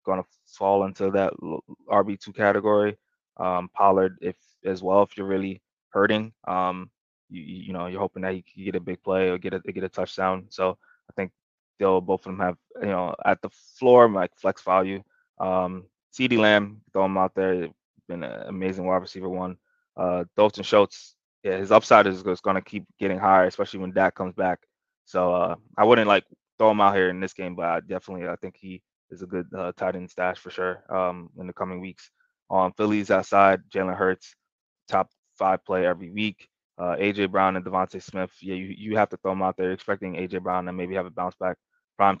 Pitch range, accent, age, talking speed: 90-100 Hz, American, 20-39, 215 wpm